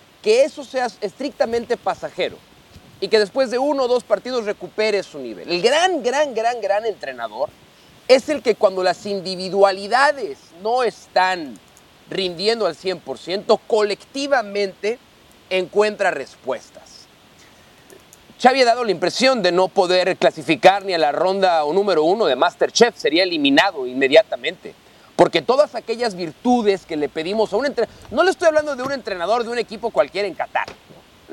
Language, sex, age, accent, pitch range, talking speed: Spanish, male, 40-59, Mexican, 190-275 Hz, 155 wpm